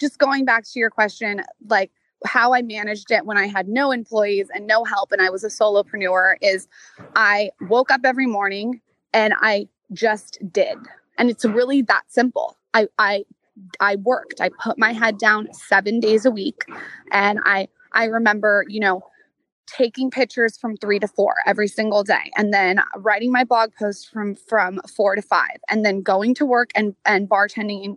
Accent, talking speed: American, 185 wpm